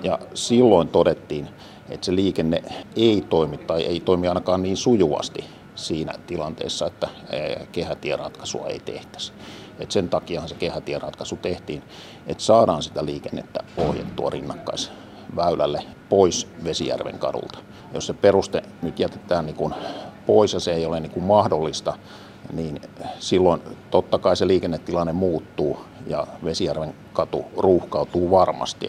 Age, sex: 50-69, male